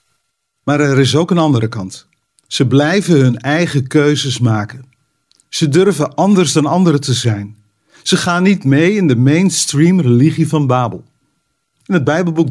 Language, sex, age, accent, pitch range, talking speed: Dutch, male, 50-69, Dutch, 130-175 Hz, 160 wpm